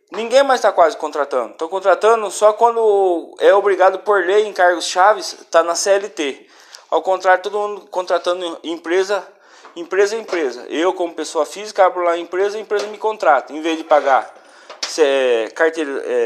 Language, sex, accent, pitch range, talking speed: Portuguese, male, Brazilian, 165-220 Hz, 170 wpm